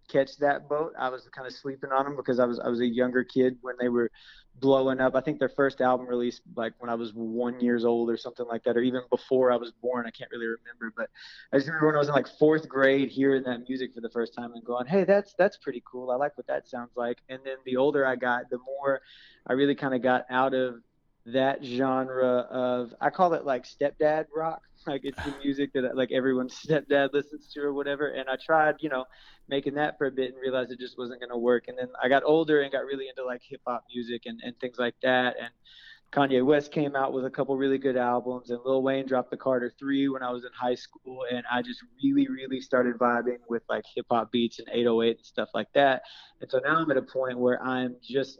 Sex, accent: male, American